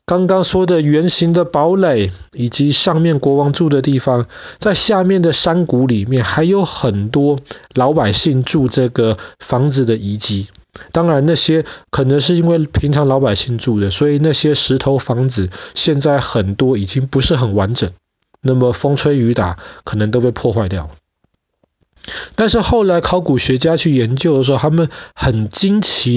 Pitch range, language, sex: 115-160 Hz, Chinese, male